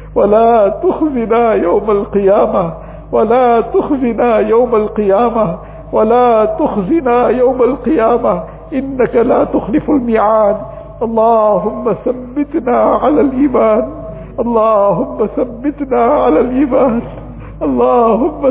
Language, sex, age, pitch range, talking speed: English, male, 50-69, 210-265 Hz, 80 wpm